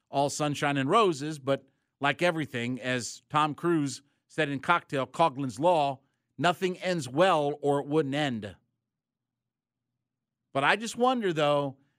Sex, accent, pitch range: male, American, 135-170 Hz